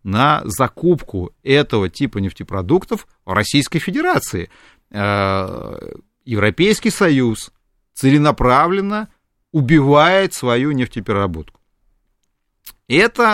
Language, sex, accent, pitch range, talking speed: Russian, male, native, 105-155 Hz, 65 wpm